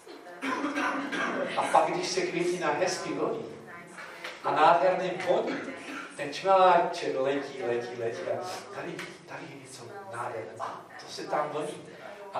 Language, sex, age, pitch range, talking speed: Czech, male, 40-59, 140-185 Hz, 130 wpm